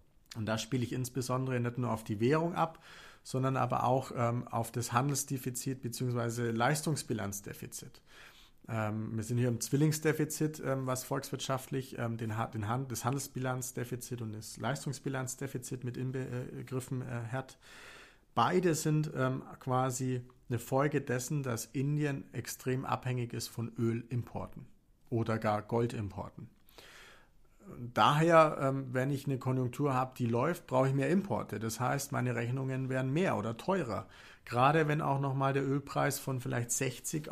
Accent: German